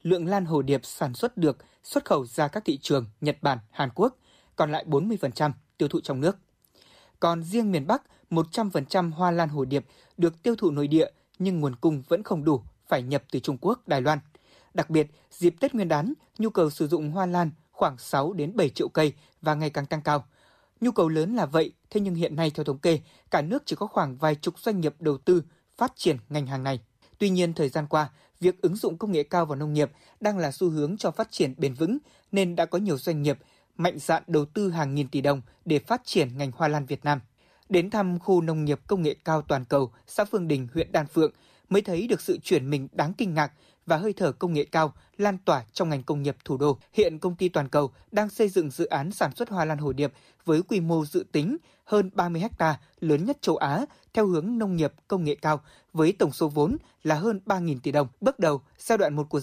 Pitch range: 145-190 Hz